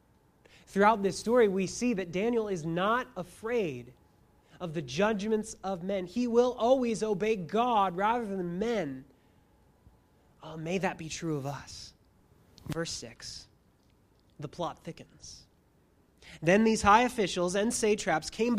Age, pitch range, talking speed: 30-49, 165-245 Hz, 130 wpm